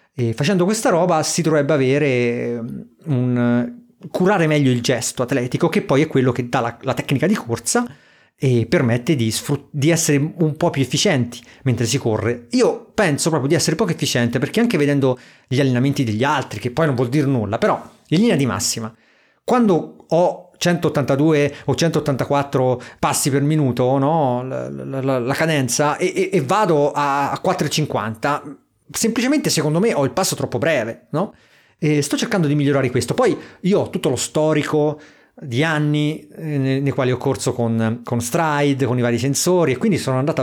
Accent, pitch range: native, 125-160 Hz